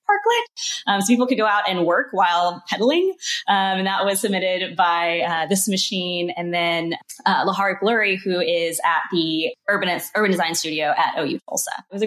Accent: American